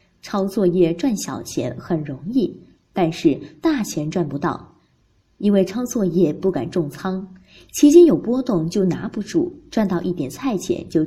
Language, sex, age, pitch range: Chinese, female, 20-39, 170-260 Hz